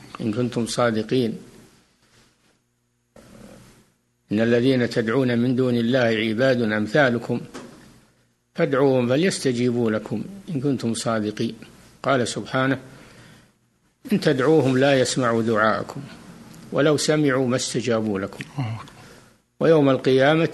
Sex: male